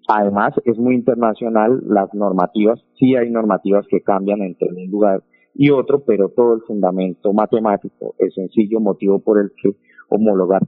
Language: Spanish